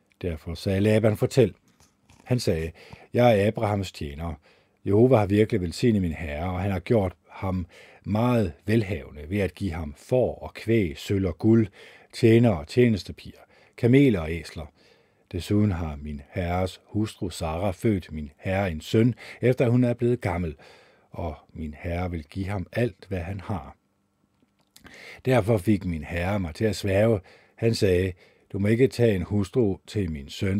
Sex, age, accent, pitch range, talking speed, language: male, 50-69, native, 85-115 Hz, 165 wpm, Danish